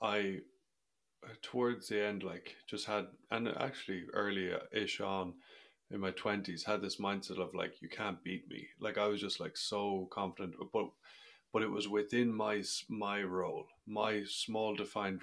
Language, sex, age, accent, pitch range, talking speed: English, male, 30-49, Irish, 95-105 Hz, 165 wpm